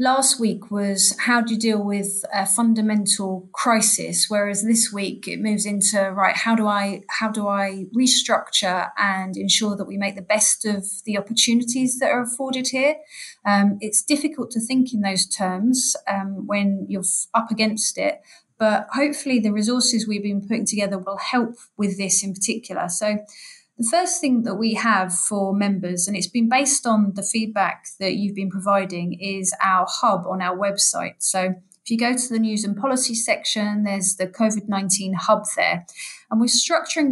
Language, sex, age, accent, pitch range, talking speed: English, female, 30-49, British, 195-235 Hz, 185 wpm